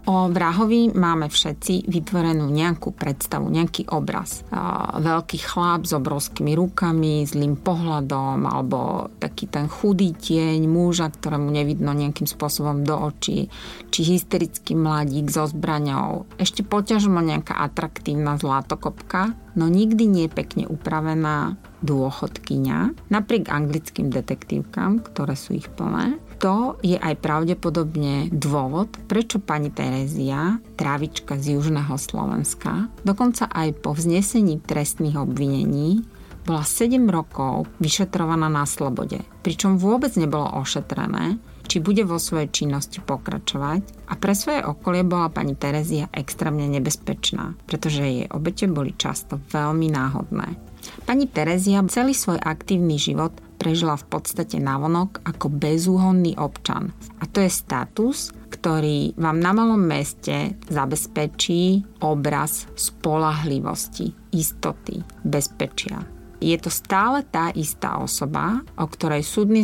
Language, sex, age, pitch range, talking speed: Slovak, female, 30-49, 150-190 Hz, 120 wpm